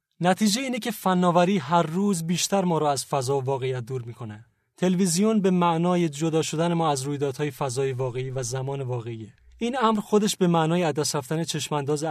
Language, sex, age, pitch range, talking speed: Persian, male, 30-49, 135-175 Hz, 180 wpm